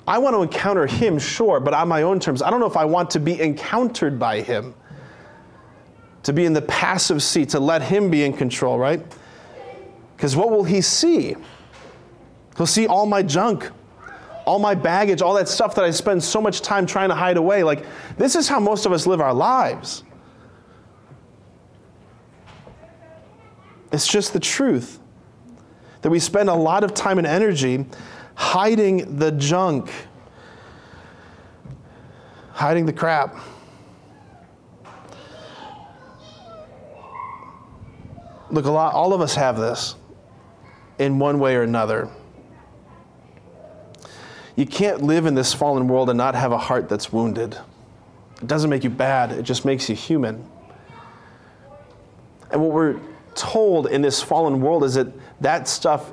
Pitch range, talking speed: 125-190 Hz, 150 wpm